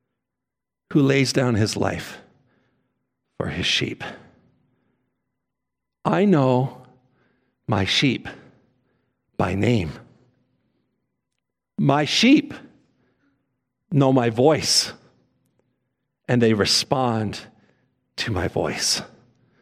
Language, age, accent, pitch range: English, 50-69, American, 120-175 Hz